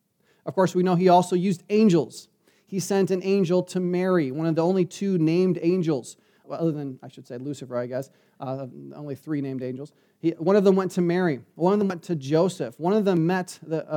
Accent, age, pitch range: American, 30-49, 150-195 Hz